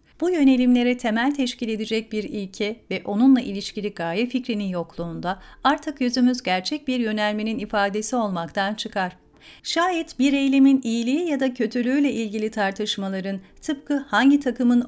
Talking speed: 135 wpm